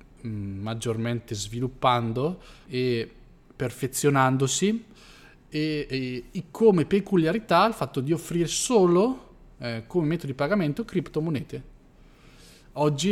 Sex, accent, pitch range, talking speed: male, native, 110-155 Hz, 95 wpm